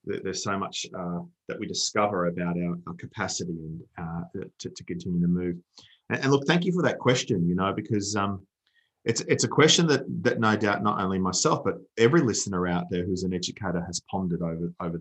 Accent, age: Australian, 30-49